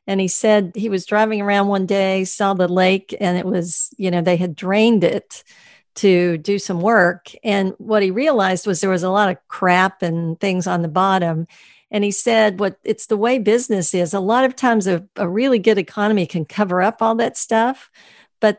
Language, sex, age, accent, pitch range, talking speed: English, female, 50-69, American, 180-210 Hz, 215 wpm